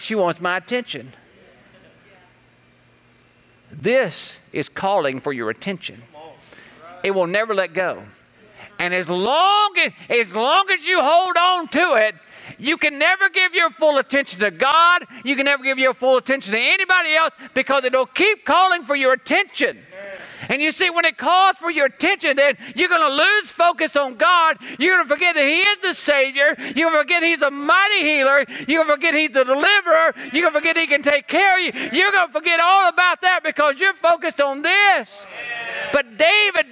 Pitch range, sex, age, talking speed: 270-355 Hz, male, 50-69, 195 wpm